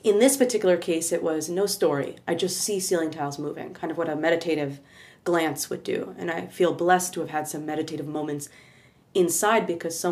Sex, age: female, 30-49